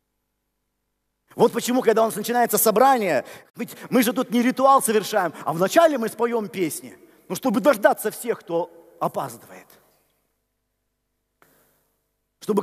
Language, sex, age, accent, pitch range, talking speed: Russian, male, 40-59, native, 180-255 Hz, 125 wpm